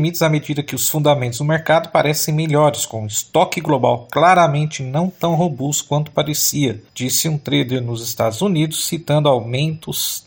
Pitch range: 140-170 Hz